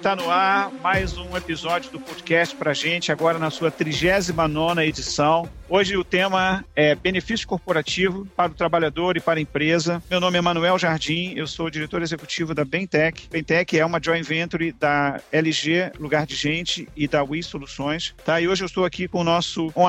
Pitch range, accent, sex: 150-175 Hz, Brazilian, male